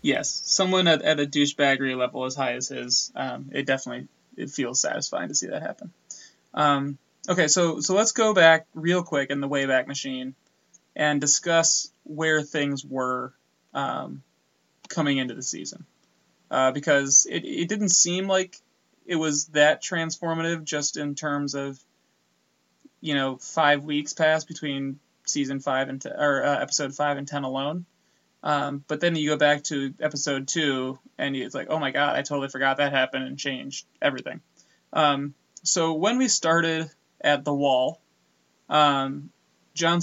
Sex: male